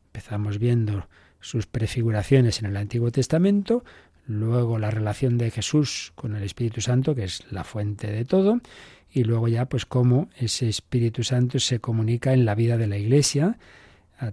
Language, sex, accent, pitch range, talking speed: Spanish, male, Spanish, 110-135 Hz, 170 wpm